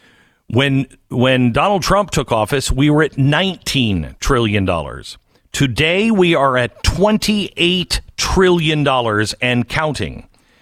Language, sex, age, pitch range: English, male, 50-69, 110-170 Hz